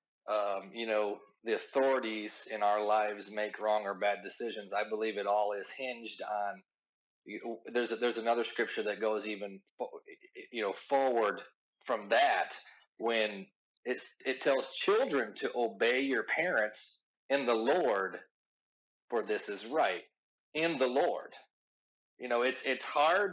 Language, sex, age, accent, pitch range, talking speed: English, male, 30-49, American, 105-130 Hz, 155 wpm